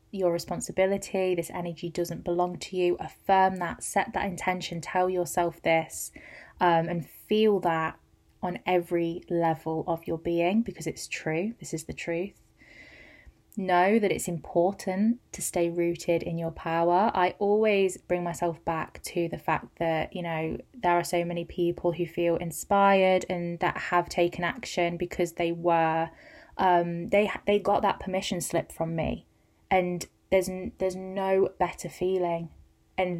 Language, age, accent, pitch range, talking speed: English, 20-39, British, 170-185 Hz, 155 wpm